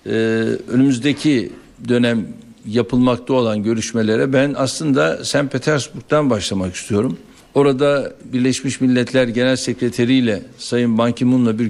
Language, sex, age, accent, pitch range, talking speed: Turkish, male, 60-79, native, 120-150 Hz, 110 wpm